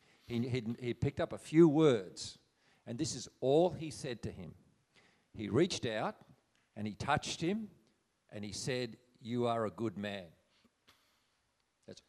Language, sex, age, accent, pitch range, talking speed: English, male, 50-69, Australian, 110-130 Hz, 150 wpm